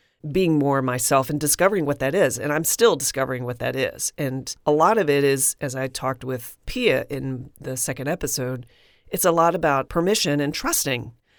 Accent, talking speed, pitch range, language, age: American, 195 wpm, 130-170 Hz, English, 40-59